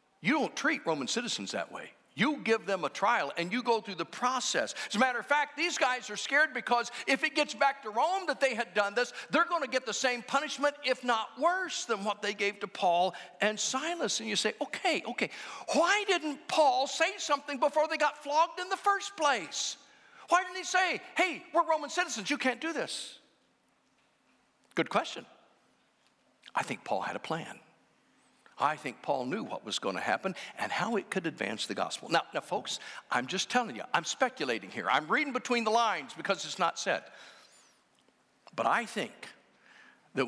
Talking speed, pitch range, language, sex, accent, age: 200 wpm, 215-310 Hz, English, male, American, 50-69